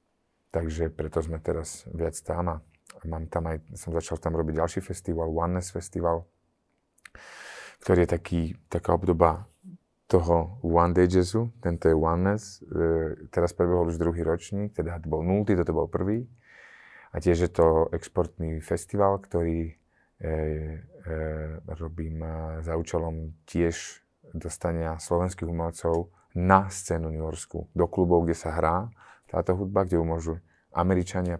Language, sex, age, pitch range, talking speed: Slovak, male, 30-49, 80-90 Hz, 140 wpm